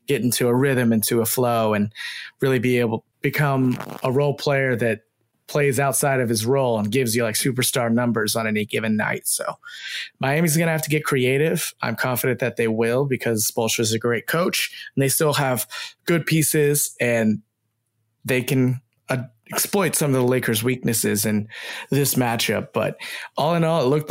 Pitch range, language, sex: 115-135 Hz, English, male